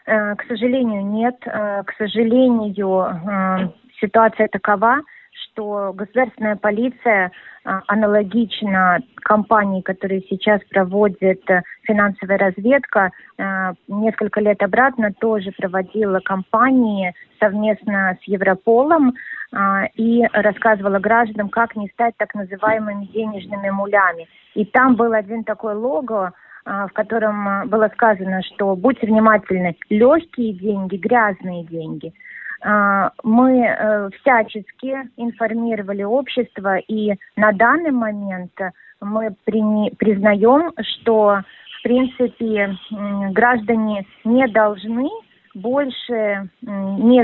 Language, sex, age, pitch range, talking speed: Russian, female, 20-39, 200-235 Hz, 90 wpm